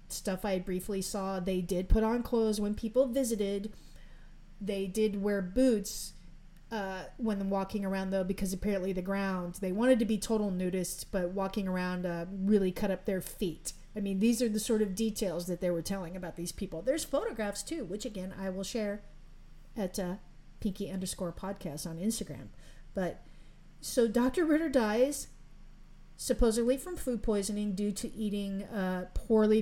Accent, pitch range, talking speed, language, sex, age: American, 185-230 Hz, 170 wpm, English, female, 40-59